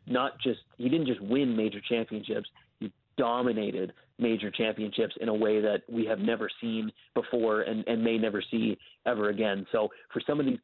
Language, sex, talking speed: English, male, 185 wpm